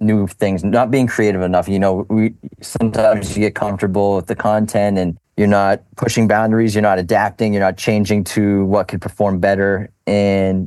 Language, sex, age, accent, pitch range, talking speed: English, male, 30-49, American, 95-110 Hz, 185 wpm